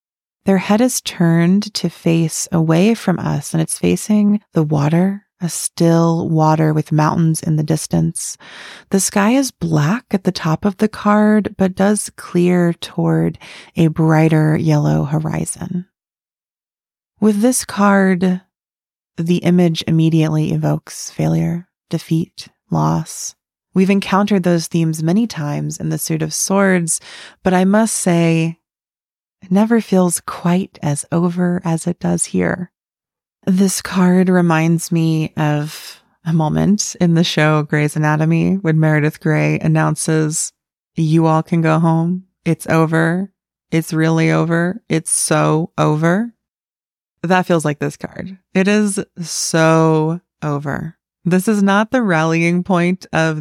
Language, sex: English, female